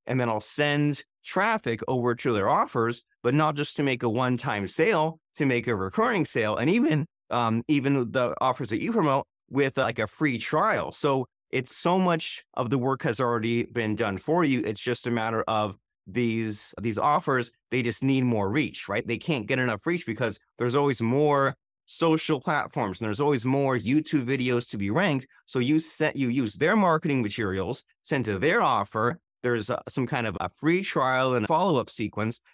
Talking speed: 200 wpm